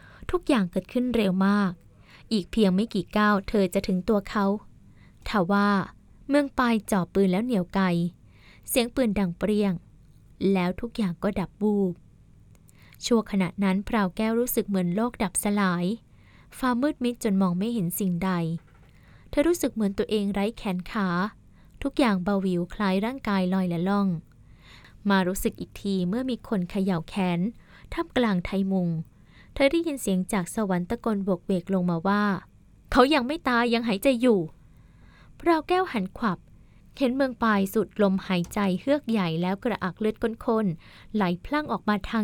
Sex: female